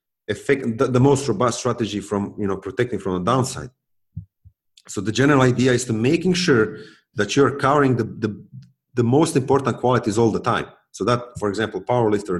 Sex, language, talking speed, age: male, English, 185 wpm, 40-59